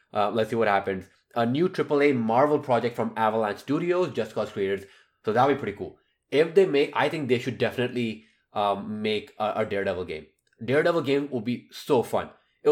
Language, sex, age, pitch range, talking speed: English, male, 20-39, 110-130 Hz, 205 wpm